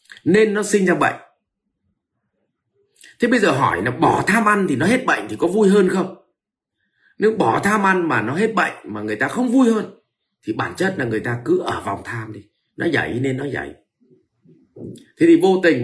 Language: Vietnamese